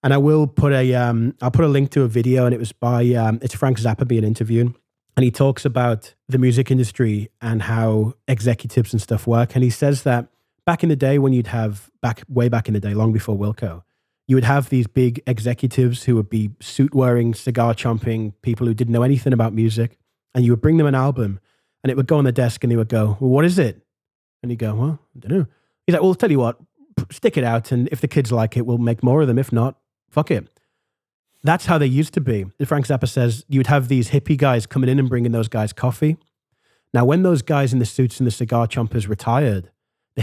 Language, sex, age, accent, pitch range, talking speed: English, male, 20-39, British, 115-140 Hz, 245 wpm